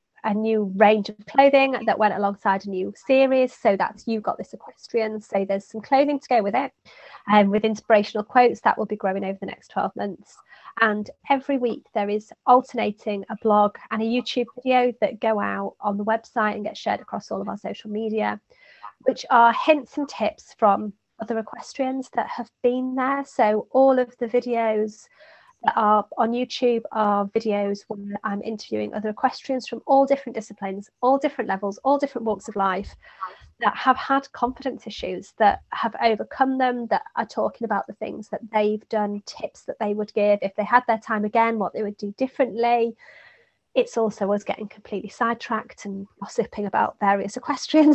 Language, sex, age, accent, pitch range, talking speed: English, female, 30-49, British, 210-255 Hz, 190 wpm